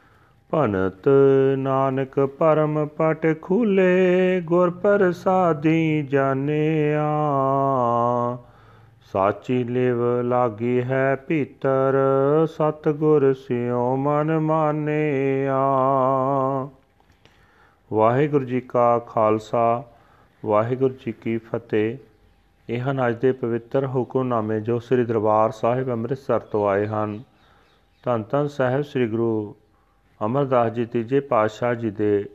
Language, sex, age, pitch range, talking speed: Punjabi, male, 40-59, 110-135 Hz, 85 wpm